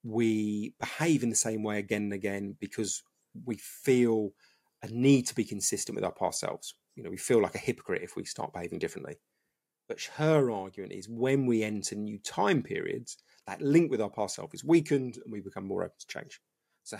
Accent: British